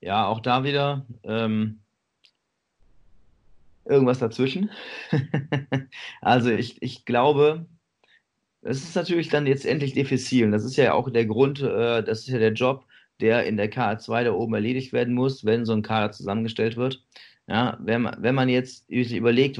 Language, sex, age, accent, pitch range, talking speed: German, male, 30-49, German, 110-130 Hz, 155 wpm